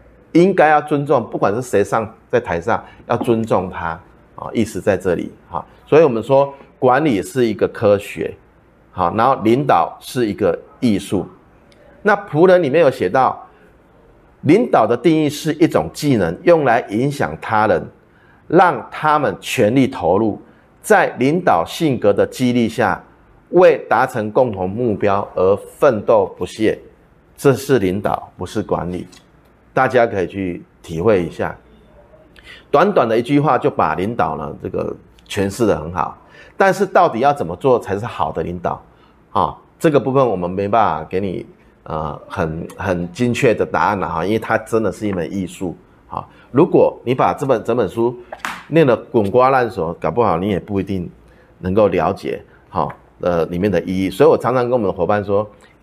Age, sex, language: 30-49, male, Chinese